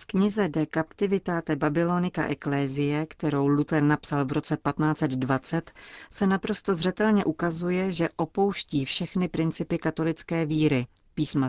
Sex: female